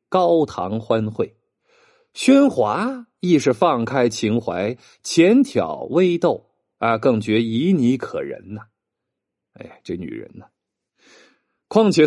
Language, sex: Chinese, male